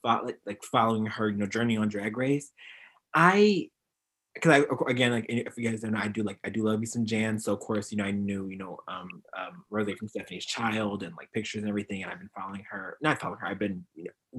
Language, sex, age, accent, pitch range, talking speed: English, male, 20-39, American, 105-145 Hz, 250 wpm